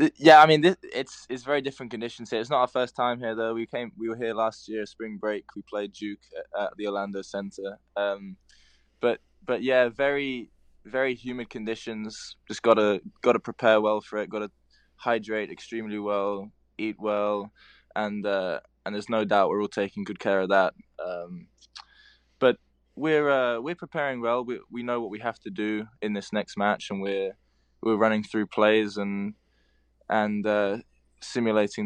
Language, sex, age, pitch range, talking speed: English, male, 10-29, 100-115 Hz, 185 wpm